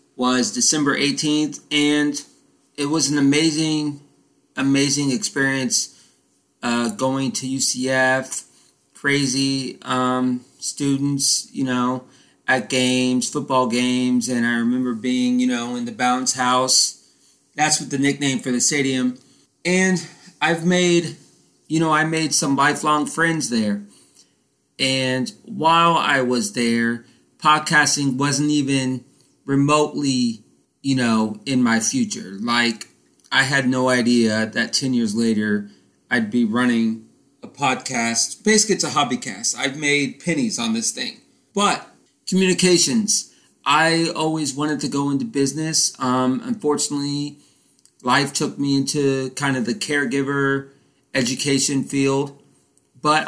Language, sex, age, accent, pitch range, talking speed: English, male, 30-49, American, 125-155 Hz, 125 wpm